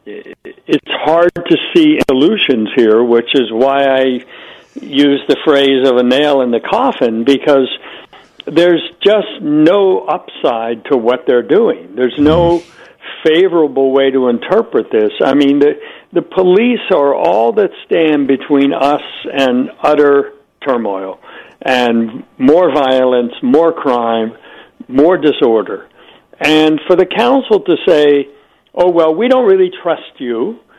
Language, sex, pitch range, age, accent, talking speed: English, male, 140-230 Hz, 60-79, American, 135 wpm